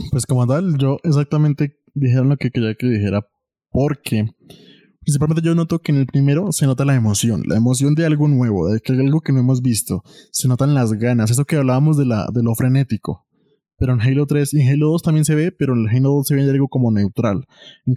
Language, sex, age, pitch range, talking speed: Spanish, male, 20-39, 125-145 Hz, 225 wpm